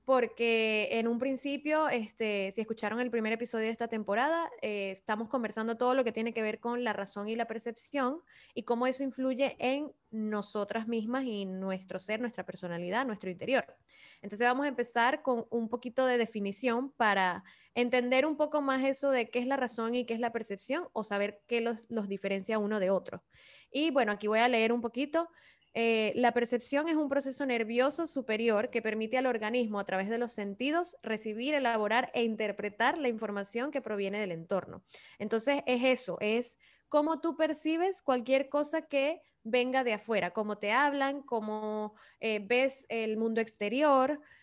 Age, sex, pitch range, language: 10-29, female, 215-265 Hz, Spanish